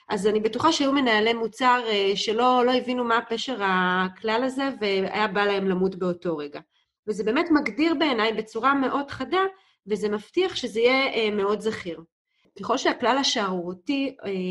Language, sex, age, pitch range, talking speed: Hebrew, female, 30-49, 195-260 Hz, 145 wpm